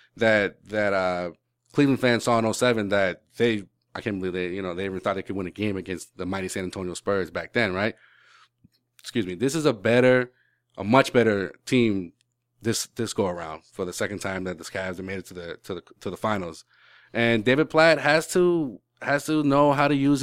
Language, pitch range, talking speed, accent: English, 100-125 Hz, 225 wpm, American